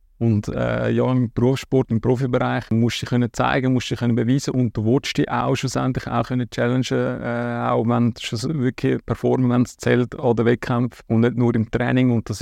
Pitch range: 110-125 Hz